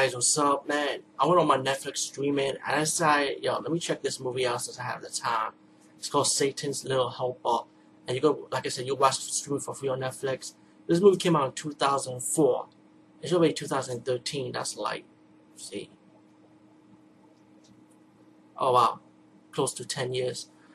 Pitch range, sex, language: 125-150 Hz, male, English